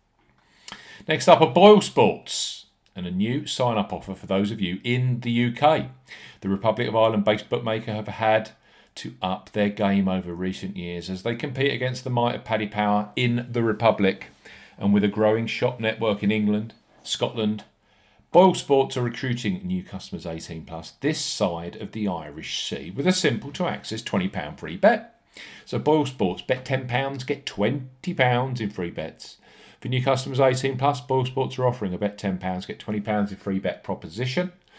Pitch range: 100-130 Hz